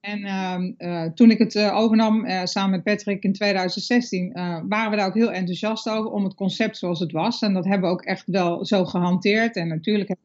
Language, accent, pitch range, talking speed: Dutch, Dutch, 190-225 Hz, 235 wpm